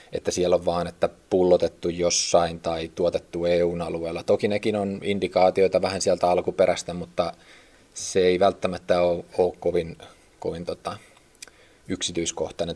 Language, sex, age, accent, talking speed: Finnish, male, 20-39, native, 120 wpm